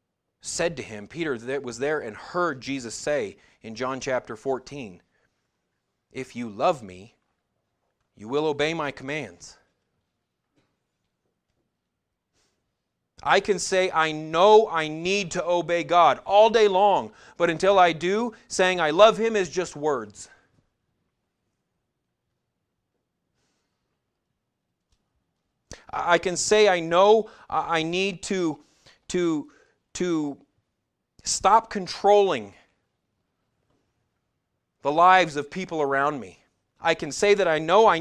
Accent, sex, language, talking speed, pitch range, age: American, male, English, 115 wpm, 145-200 Hz, 30-49